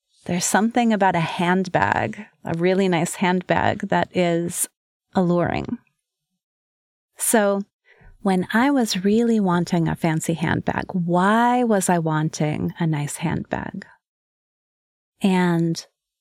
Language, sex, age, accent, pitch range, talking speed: English, female, 30-49, American, 175-230 Hz, 105 wpm